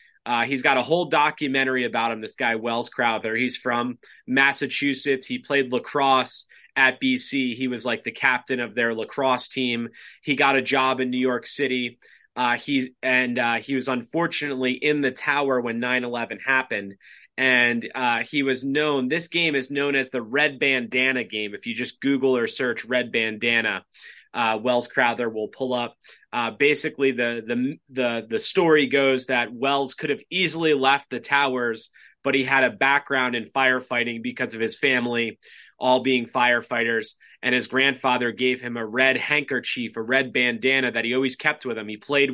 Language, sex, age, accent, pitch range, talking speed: English, male, 20-39, American, 120-140 Hz, 180 wpm